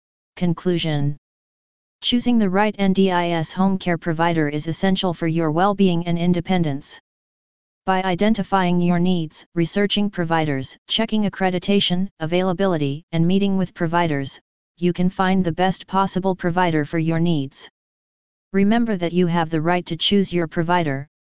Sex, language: female, English